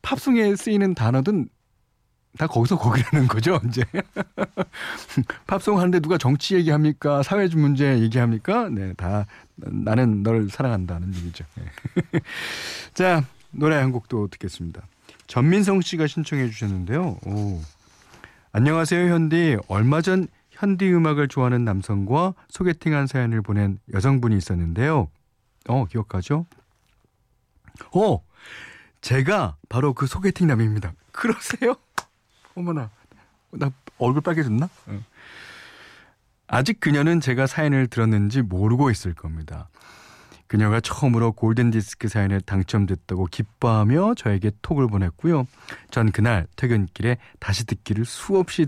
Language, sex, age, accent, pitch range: Korean, male, 40-59, native, 100-150 Hz